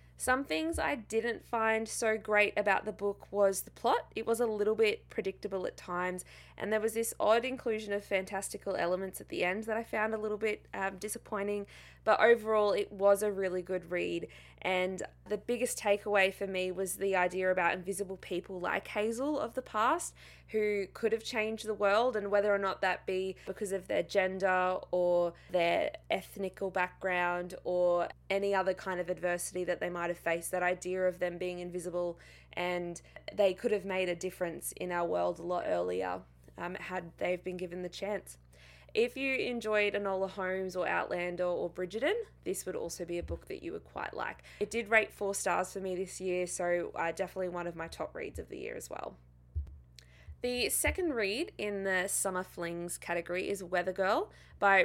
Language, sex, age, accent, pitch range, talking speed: English, female, 20-39, Australian, 180-210 Hz, 195 wpm